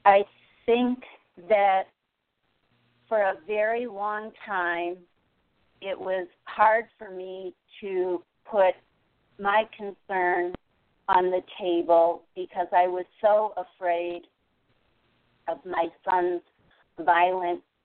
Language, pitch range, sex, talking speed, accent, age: English, 170-205 Hz, female, 100 wpm, American, 40-59